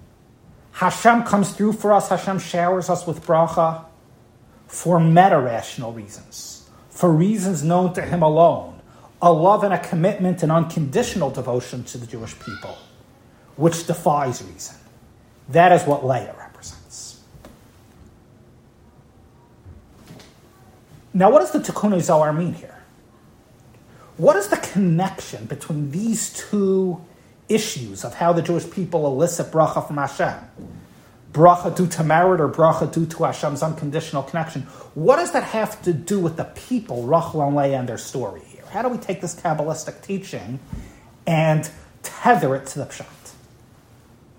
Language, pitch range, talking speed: English, 135-180 Hz, 140 wpm